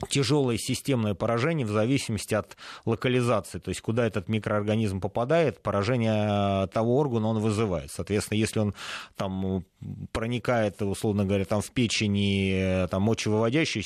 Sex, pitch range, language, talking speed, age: male, 95-115 Hz, Russian, 130 wpm, 30-49